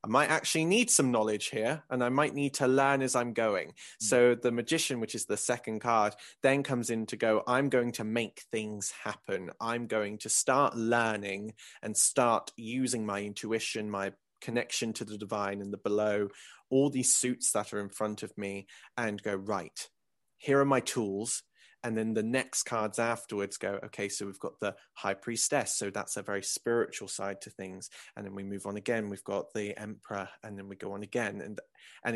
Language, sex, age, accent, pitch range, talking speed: English, male, 20-39, British, 105-125 Hz, 205 wpm